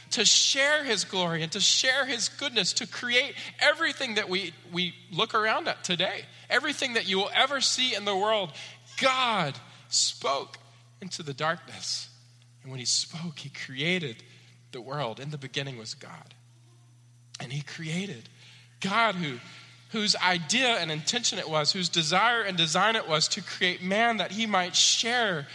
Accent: American